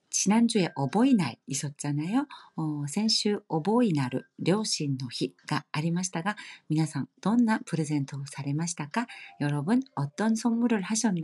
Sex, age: female, 40-59